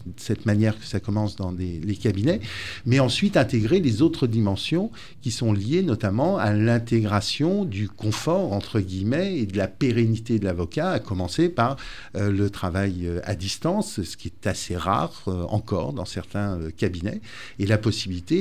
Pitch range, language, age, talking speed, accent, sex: 95-120 Hz, French, 50-69, 175 wpm, French, male